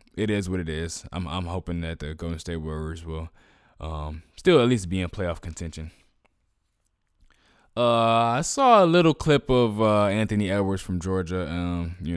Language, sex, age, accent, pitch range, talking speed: English, male, 20-39, American, 85-115 Hz, 180 wpm